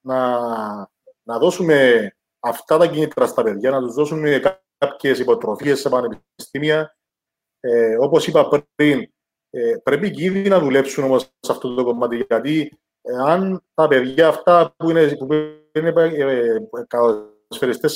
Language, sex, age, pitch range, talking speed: Greek, male, 30-49, 130-180 Hz, 125 wpm